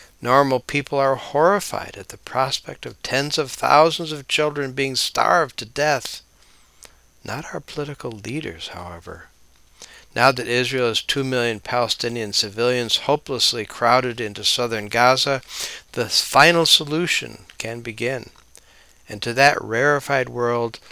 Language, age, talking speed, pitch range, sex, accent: English, 60-79, 130 wpm, 110-140 Hz, male, American